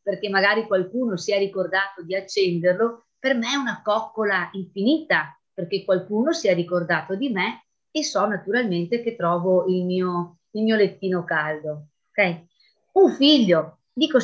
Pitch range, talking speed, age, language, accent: 180-235 Hz, 145 wpm, 30-49, Italian, native